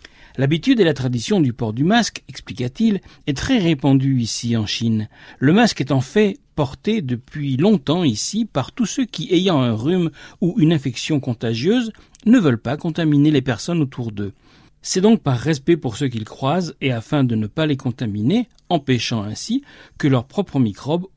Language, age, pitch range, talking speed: French, 60-79, 125-165 Hz, 180 wpm